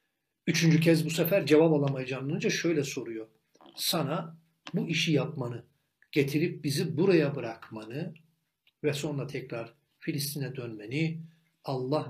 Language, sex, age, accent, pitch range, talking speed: Turkish, male, 60-79, native, 145-195 Hz, 115 wpm